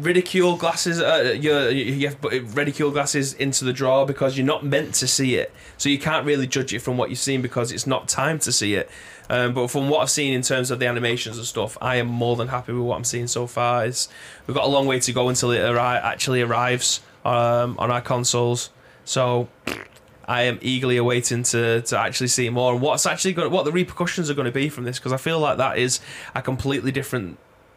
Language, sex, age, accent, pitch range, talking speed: English, male, 20-39, British, 120-135 Hz, 235 wpm